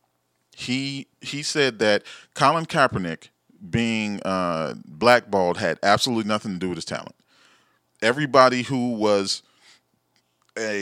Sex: male